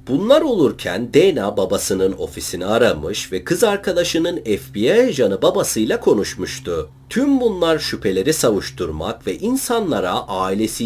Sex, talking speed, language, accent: male, 110 wpm, Turkish, native